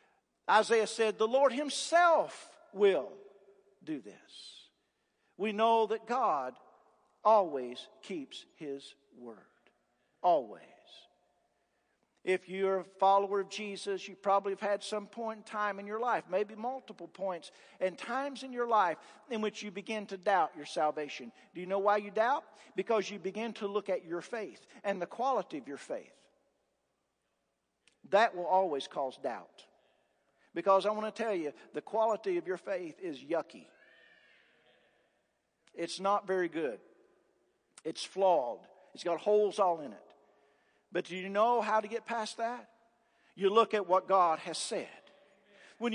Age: 50-69